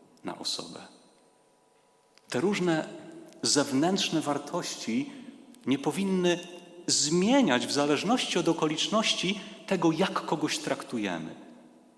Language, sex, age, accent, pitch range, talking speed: Polish, male, 40-59, native, 110-155 Hz, 85 wpm